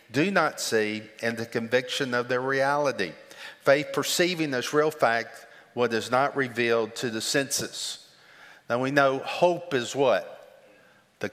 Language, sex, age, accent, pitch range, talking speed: English, male, 50-69, American, 115-150 Hz, 150 wpm